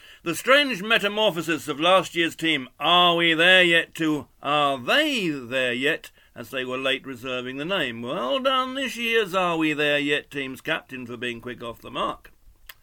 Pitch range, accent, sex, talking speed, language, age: 140-220 Hz, British, male, 180 wpm, English, 60-79